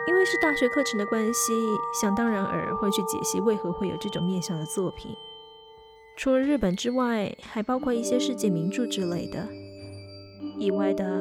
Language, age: Chinese, 20-39